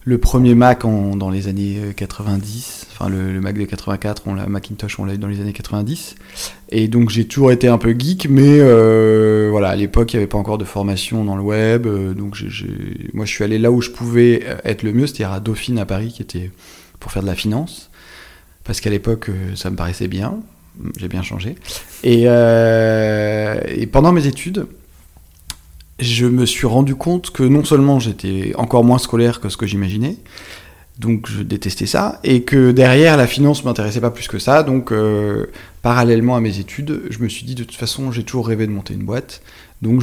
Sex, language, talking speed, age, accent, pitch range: male, French, 205 wpm, 20-39, French, 100-120 Hz